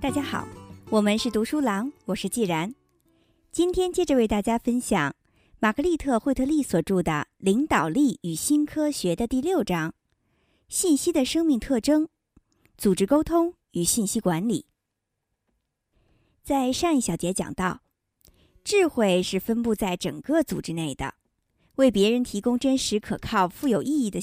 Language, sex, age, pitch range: Chinese, male, 50-69, 185-280 Hz